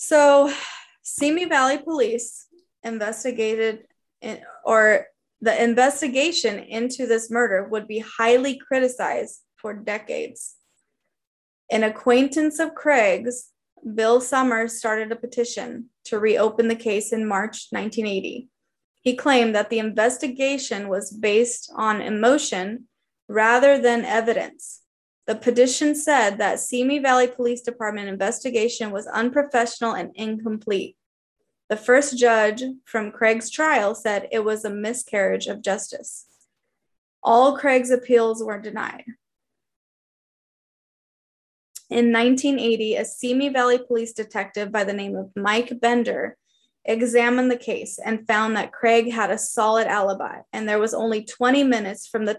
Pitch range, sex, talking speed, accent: 215-255 Hz, female, 125 wpm, American